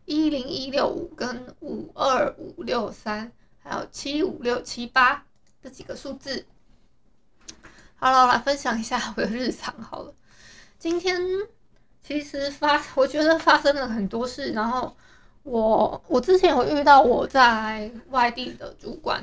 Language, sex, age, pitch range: Chinese, female, 20-39, 230-300 Hz